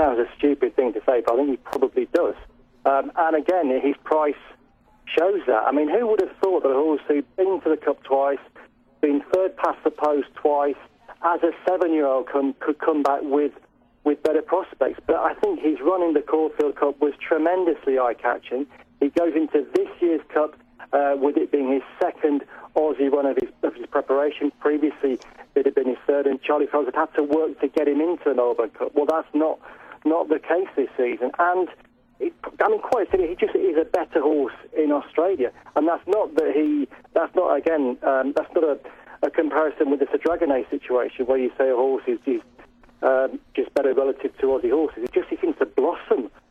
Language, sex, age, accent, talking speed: English, male, 40-59, British, 210 wpm